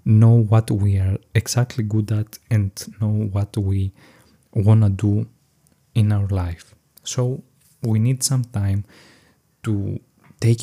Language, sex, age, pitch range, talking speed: Greek, male, 20-39, 100-120 Hz, 135 wpm